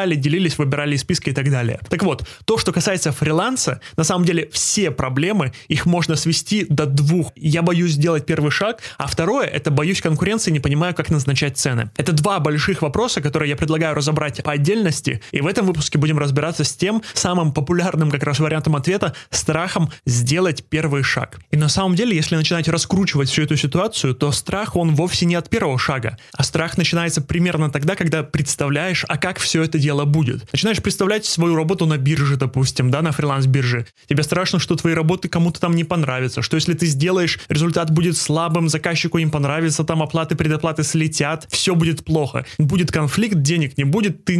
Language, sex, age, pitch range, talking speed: Russian, male, 20-39, 145-175 Hz, 185 wpm